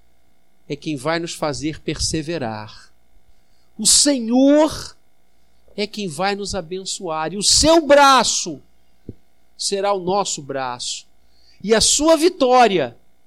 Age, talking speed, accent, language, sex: 50-69, 115 wpm, Brazilian, Portuguese, male